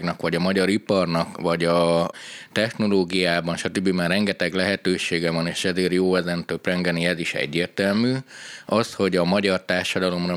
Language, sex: Hungarian, male